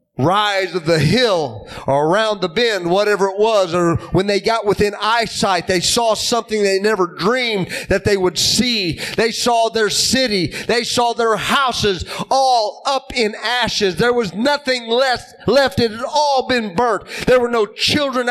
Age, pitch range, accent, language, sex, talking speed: 30-49, 210-270 Hz, American, English, male, 170 wpm